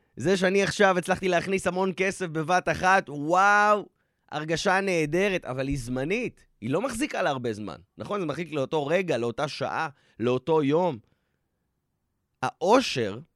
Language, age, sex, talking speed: Hebrew, 20-39, male, 140 wpm